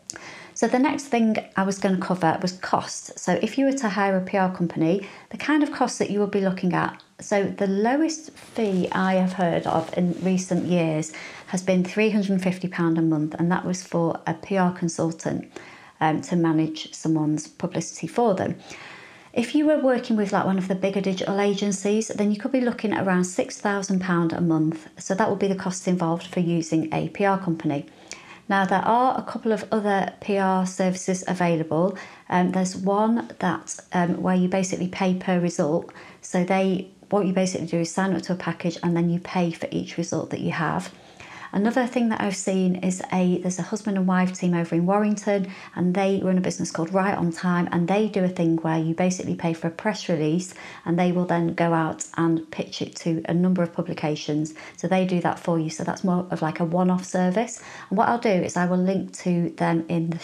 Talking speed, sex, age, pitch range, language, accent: 215 wpm, female, 30-49, 170-200 Hz, English, British